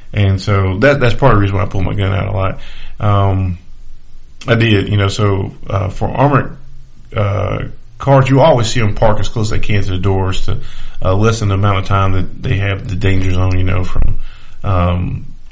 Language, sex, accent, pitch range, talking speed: English, male, American, 95-115 Hz, 220 wpm